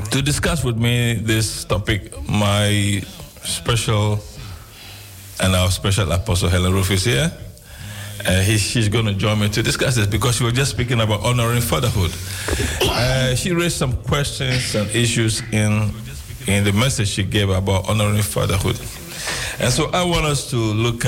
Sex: male